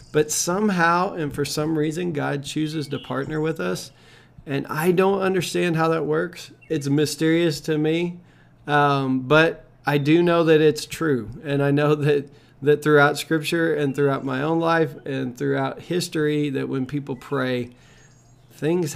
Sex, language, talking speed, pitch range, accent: male, English, 160 wpm, 135-160 Hz, American